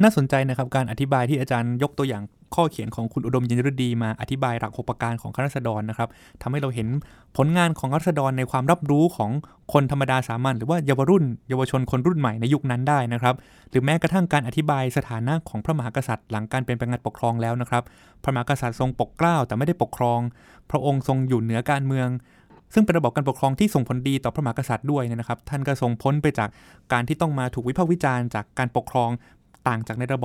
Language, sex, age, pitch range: Thai, male, 20-39, 120-150 Hz